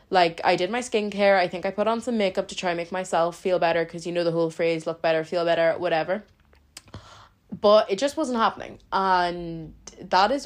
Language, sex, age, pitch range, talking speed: English, female, 20-39, 170-210 Hz, 220 wpm